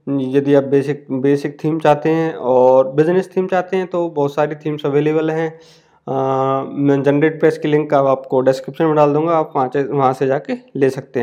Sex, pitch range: male, 140-160 Hz